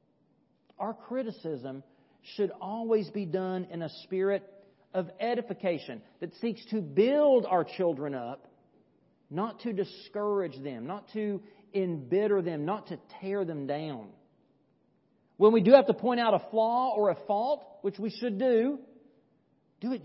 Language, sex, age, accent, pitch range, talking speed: English, male, 40-59, American, 185-240 Hz, 145 wpm